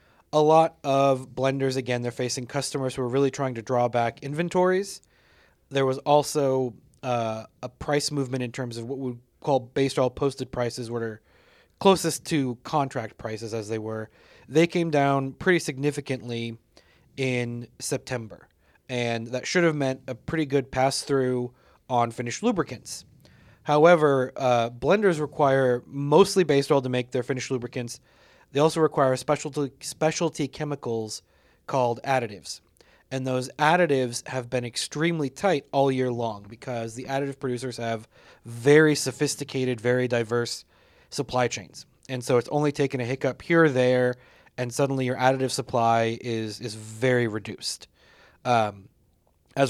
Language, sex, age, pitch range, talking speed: English, male, 30-49, 120-140 Hz, 150 wpm